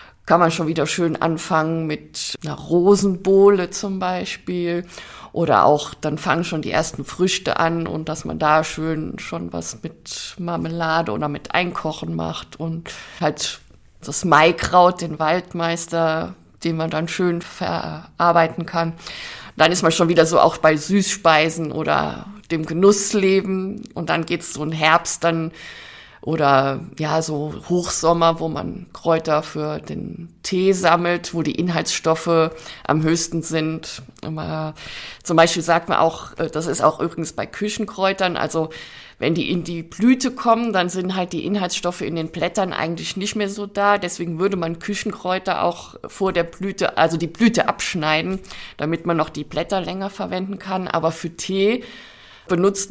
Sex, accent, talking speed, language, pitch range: female, German, 160 wpm, German, 160-185 Hz